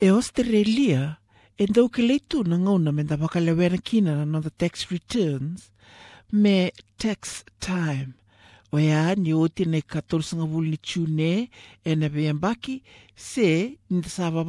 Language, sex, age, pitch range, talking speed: English, male, 60-79, 135-195 Hz, 110 wpm